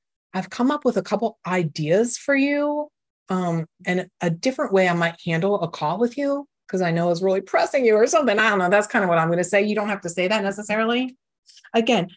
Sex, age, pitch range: female, 30-49, 180-240 Hz